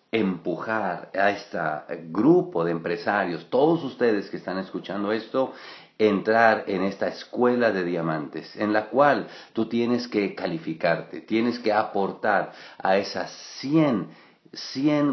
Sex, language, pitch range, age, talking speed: male, English, 90-115 Hz, 50-69, 125 wpm